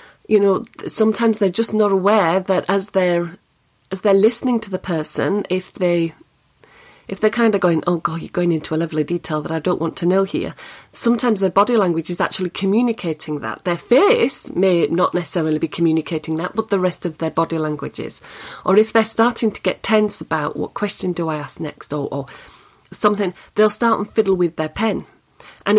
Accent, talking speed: British, 205 wpm